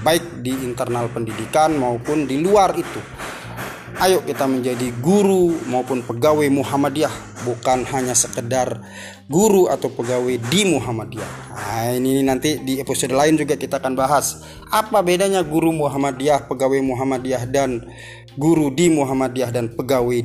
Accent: native